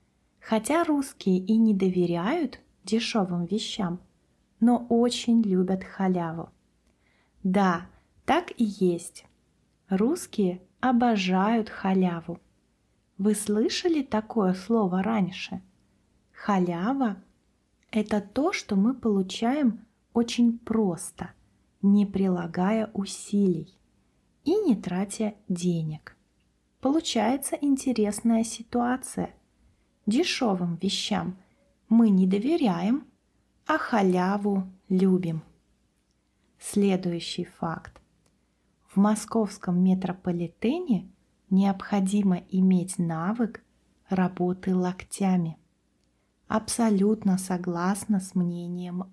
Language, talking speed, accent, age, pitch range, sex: Russian, 75 wpm, native, 20-39, 185-225 Hz, female